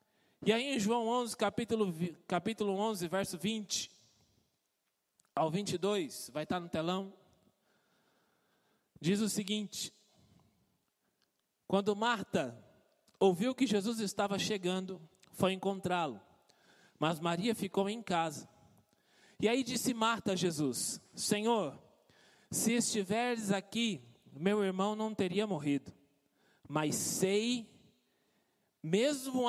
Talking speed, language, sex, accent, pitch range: 105 wpm, Portuguese, male, Brazilian, 155-210 Hz